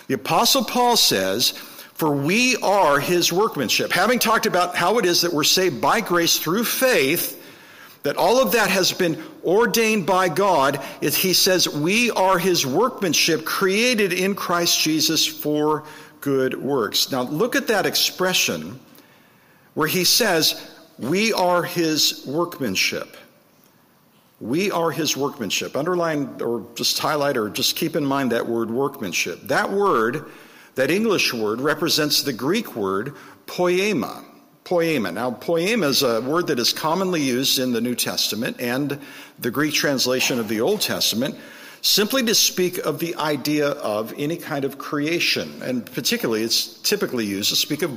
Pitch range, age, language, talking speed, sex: 140-185 Hz, 50-69, English, 155 wpm, male